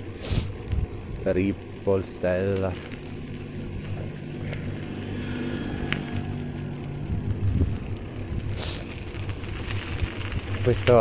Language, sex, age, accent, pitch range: Italian, male, 30-49, native, 95-115 Hz